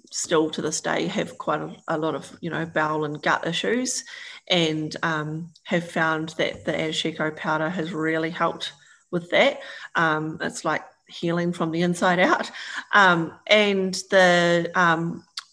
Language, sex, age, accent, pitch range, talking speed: English, female, 30-49, Australian, 160-180 Hz, 160 wpm